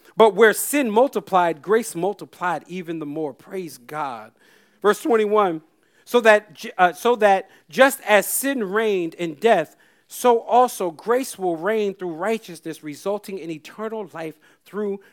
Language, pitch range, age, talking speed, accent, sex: English, 165-240 Hz, 40-59, 145 wpm, American, male